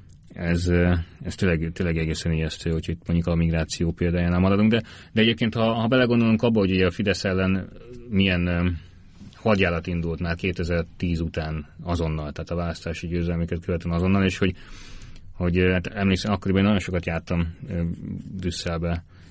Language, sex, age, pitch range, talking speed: Hungarian, male, 30-49, 85-95 Hz, 145 wpm